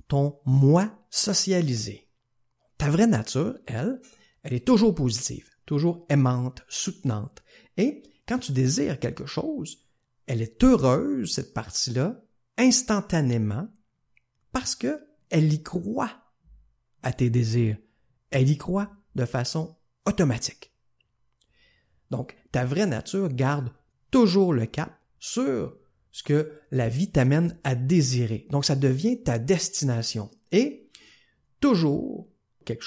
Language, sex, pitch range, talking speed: French, male, 120-180 Hz, 115 wpm